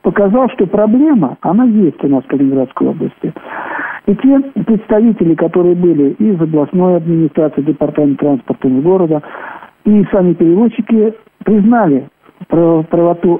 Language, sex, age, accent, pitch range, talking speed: Russian, male, 50-69, native, 150-215 Hz, 115 wpm